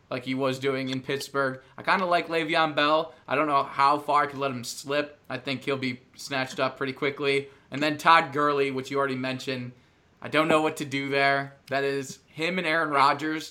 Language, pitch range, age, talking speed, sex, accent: English, 130-145 Hz, 20-39, 225 wpm, male, American